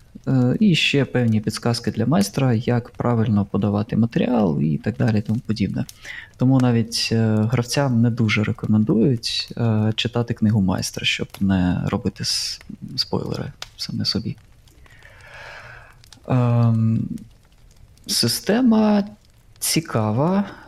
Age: 20-39